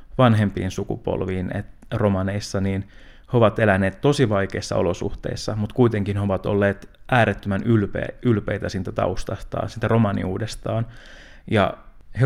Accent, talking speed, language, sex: native, 120 wpm, Finnish, male